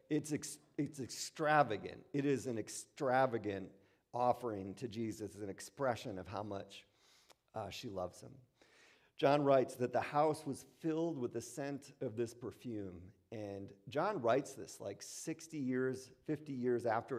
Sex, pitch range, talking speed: male, 110-140 Hz, 150 wpm